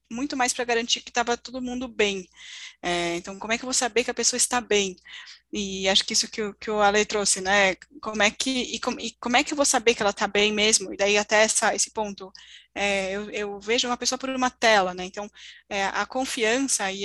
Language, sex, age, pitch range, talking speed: Portuguese, female, 10-29, 200-235 Hz, 245 wpm